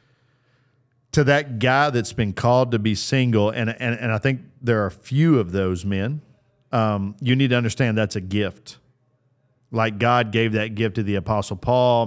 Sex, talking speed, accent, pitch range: male, 190 wpm, American, 110-135 Hz